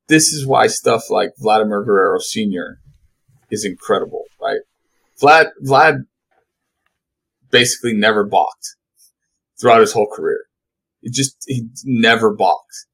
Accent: American